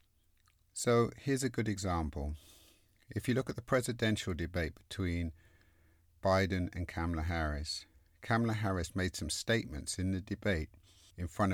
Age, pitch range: 50-69, 85-105 Hz